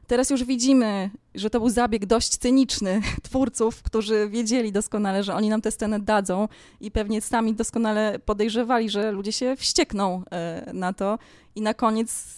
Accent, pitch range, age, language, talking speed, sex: native, 195-245 Hz, 20-39, Polish, 160 wpm, female